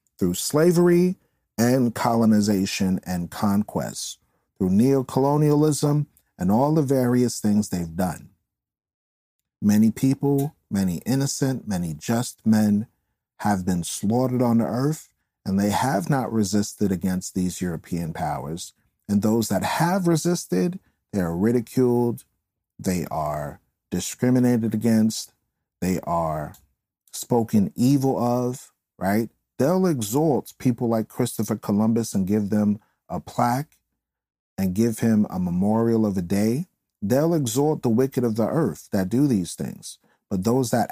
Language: English